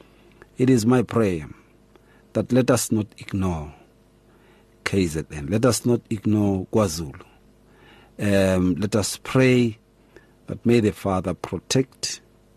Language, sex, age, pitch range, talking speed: English, male, 50-69, 100-120 Hz, 115 wpm